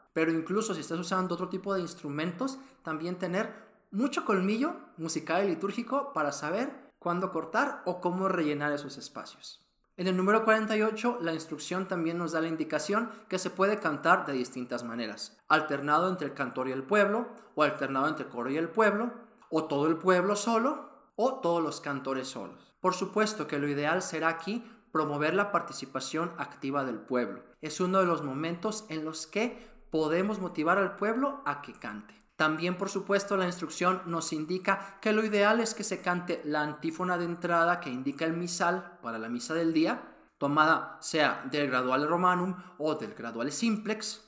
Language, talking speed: Spanish, 180 wpm